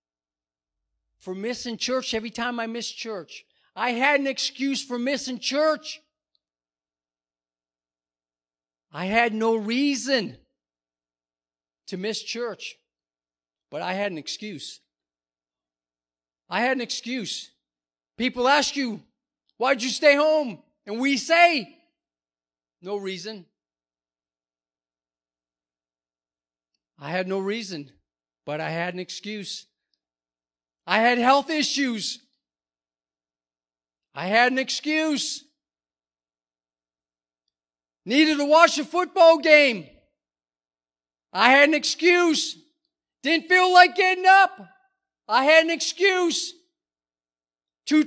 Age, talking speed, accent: 50-69, 100 wpm, American